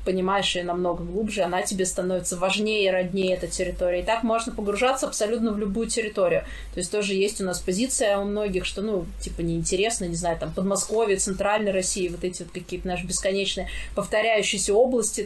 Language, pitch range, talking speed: Russian, 180-210 Hz, 185 wpm